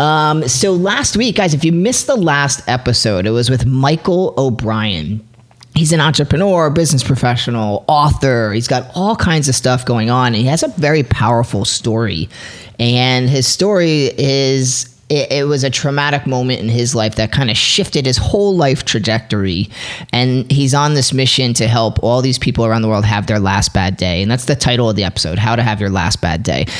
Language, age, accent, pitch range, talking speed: English, 30-49, American, 115-145 Hz, 195 wpm